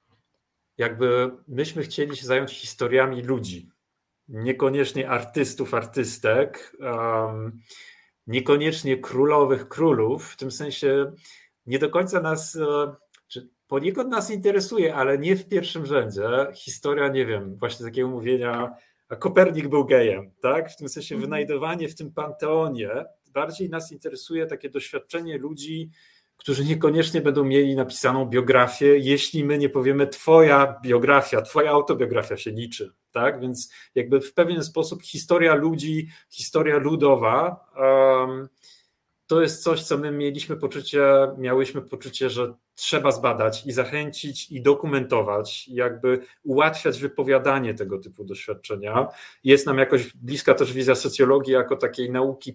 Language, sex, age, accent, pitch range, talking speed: Polish, male, 40-59, native, 130-155 Hz, 125 wpm